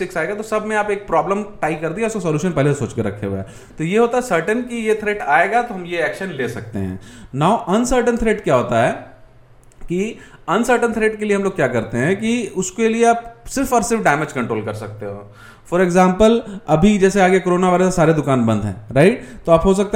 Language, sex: Hindi, male